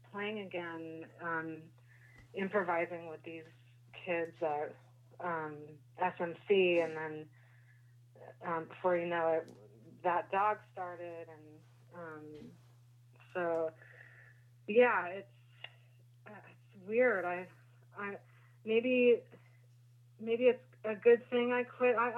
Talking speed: 105 wpm